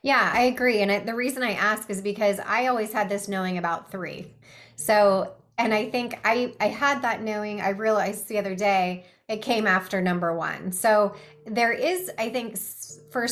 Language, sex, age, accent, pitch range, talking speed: English, female, 20-39, American, 185-220 Hz, 195 wpm